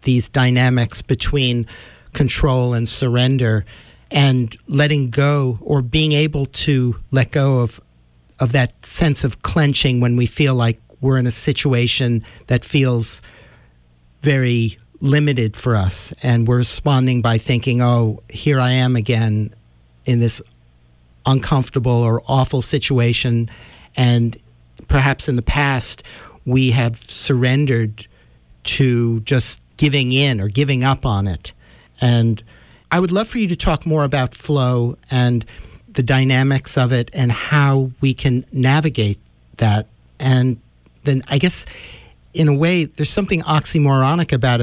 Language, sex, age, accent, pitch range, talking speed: English, male, 50-69, American, 115-140 Hz, 135 wpm